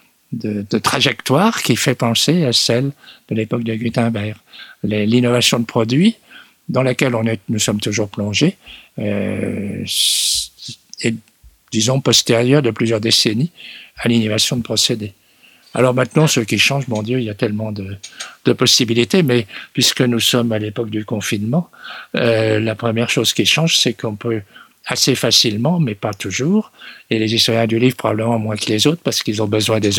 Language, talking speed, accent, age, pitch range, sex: French, 170 wpm, French, 50-69, 110-125 Hz, male